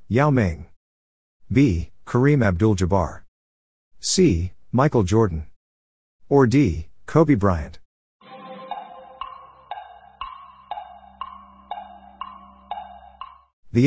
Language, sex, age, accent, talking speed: English, male, 50-69, American, 55 wpm